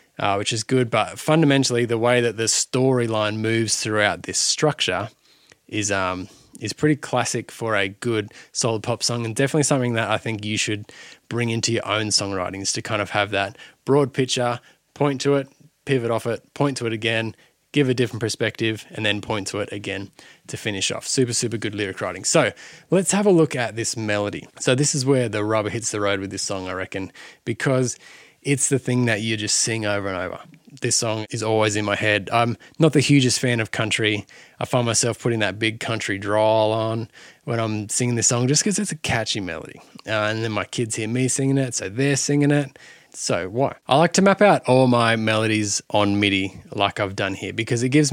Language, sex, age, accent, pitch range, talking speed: English, male, 20-39, Australian, 105-130 Hz, 215 wpm